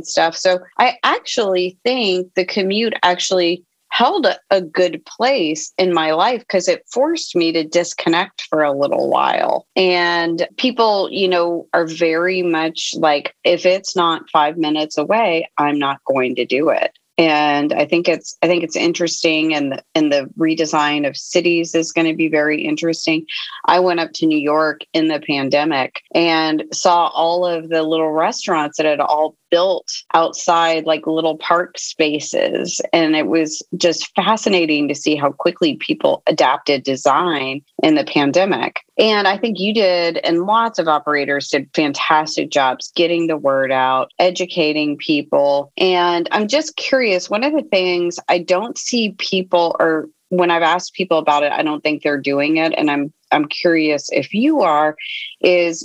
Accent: American